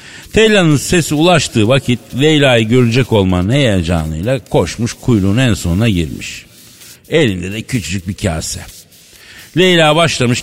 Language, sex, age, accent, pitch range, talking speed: Turkish, male, 60-79, native, 100-150 Hz, 115 wpm